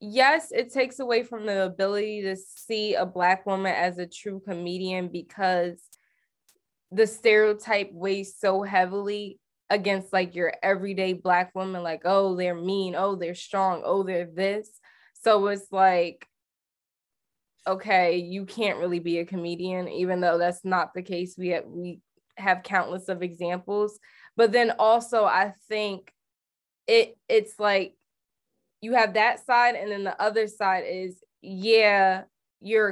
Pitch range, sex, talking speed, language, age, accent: 180-210 Hz, female, 150 wpm, English, 20-39, American